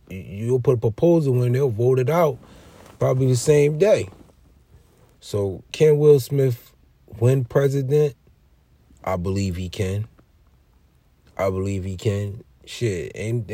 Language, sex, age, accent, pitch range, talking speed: English, male, 30-49, American, 95-120 Hz, 130 wpm